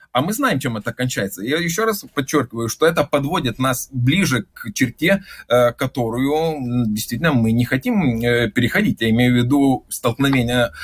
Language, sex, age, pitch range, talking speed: Russian, male, 20-39, 120-150 Hz, 155 wpm